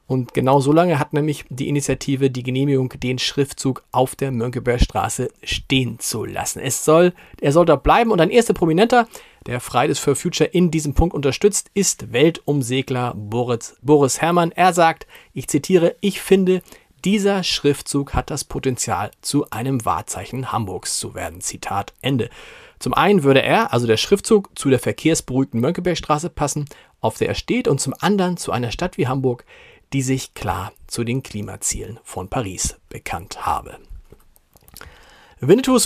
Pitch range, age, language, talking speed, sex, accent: 125-160 Hz, 40-59, German, 160 wpm, male, German